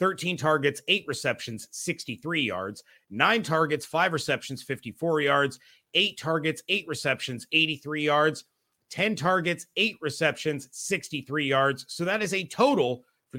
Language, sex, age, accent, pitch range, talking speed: English, male, 30-49, American, 140-180 Hz, 135 wpm